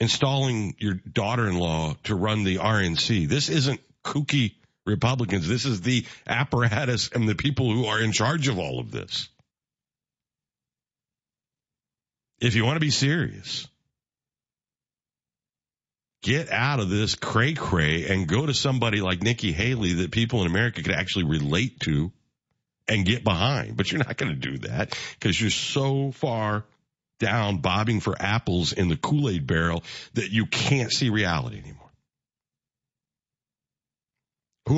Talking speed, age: 140 wpm, 50-69